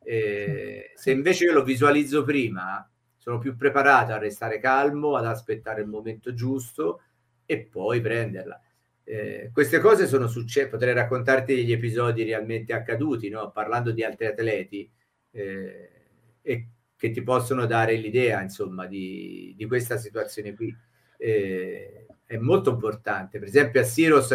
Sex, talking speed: male, 145 wpm